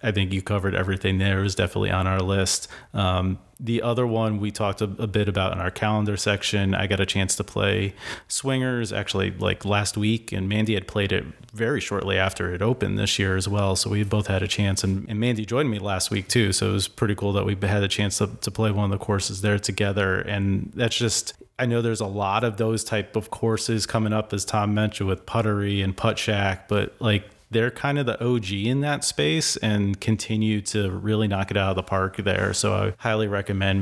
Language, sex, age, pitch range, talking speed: English, male, 30-49, 100-115 Hz, 230 wpm